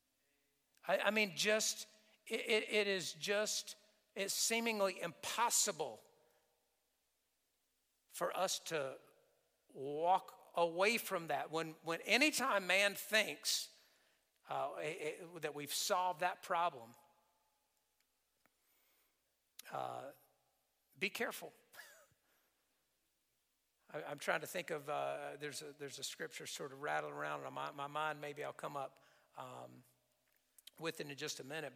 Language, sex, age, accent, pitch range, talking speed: English, male, 50-69, American, 150-215 Hz, 120 wpm